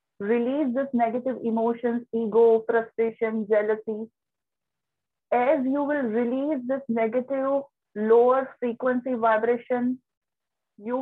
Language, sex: English, female